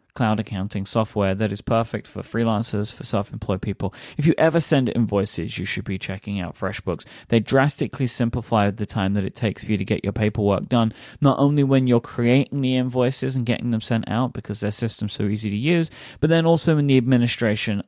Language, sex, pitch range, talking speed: English, male, 105-125 Hz, 210 wpm